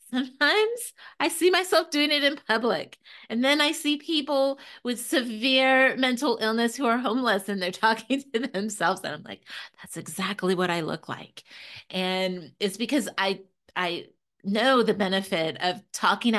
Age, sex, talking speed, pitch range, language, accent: 30-49, female, 160 wpm, 190-260 Hz, English, American